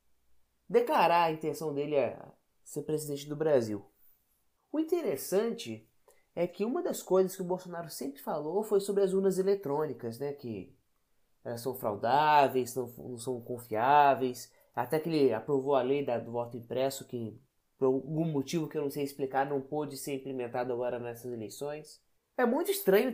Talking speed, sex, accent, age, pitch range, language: 160 wpm, male, Brazilian, 20-39, 135-220 Hz, Portuguese